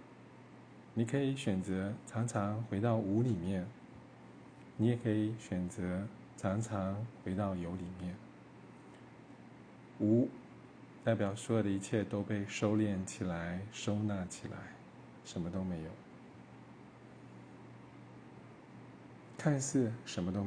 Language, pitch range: Chinese, 95-115 Hz